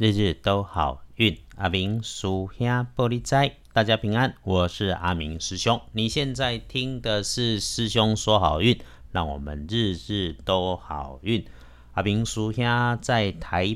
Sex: male